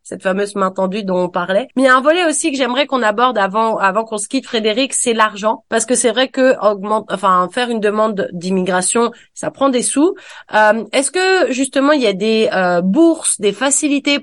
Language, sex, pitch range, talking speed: French, female, 210-260 Hz, 225 wpm